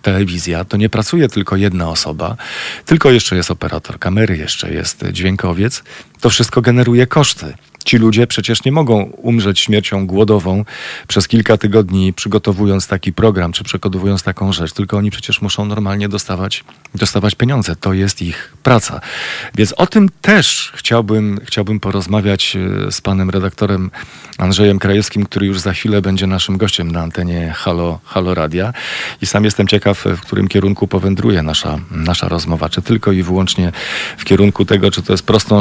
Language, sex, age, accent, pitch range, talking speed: Polish, male, 40-59, native, 95-110 Hz, 160 wpm